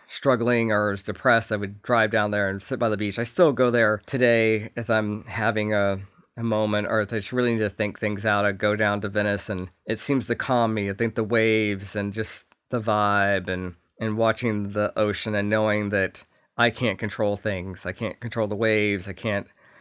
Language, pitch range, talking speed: English, 105-120 Hz, 220 wpm